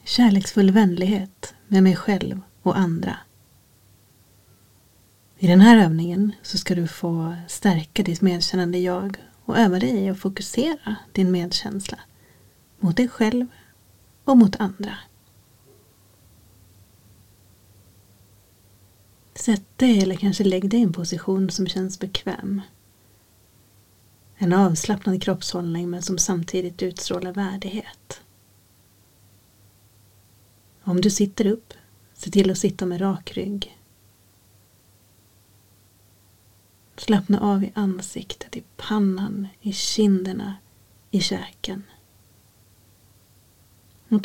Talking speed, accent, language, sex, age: 100 wpm, native, Swedish, female, 30-49